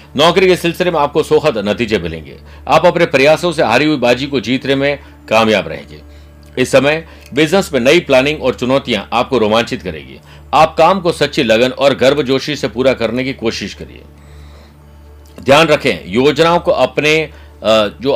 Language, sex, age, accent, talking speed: Hindi, male, 50-69, native, 170 wpm